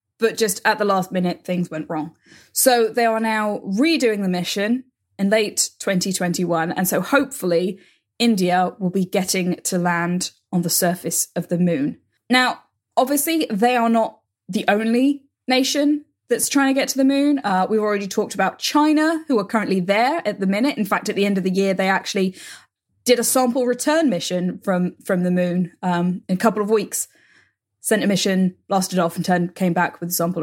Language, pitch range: English, 180-240 Hz